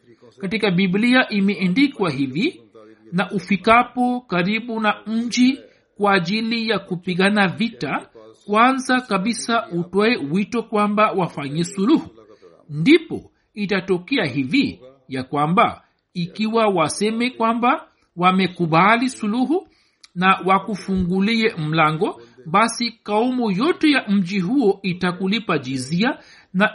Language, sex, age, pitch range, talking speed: Swahili, male, 60-79, 175-240 Hz, 95 wpm